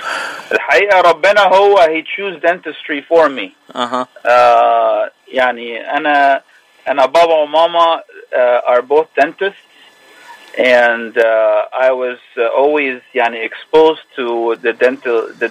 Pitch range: 125-175 Hz